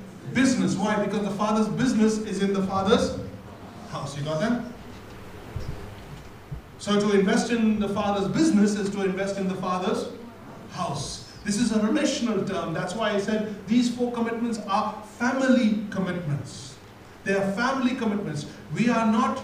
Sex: male